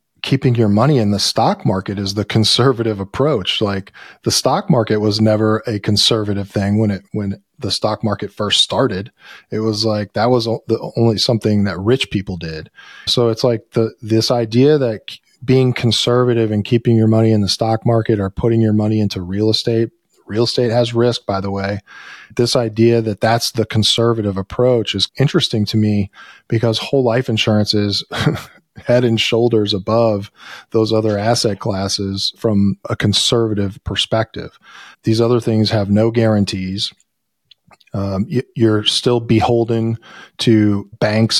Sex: male